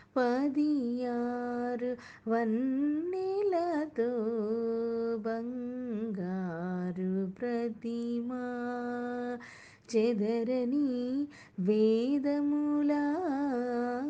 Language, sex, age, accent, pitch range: Telugu, female, 20-39, native, 255-355 Hz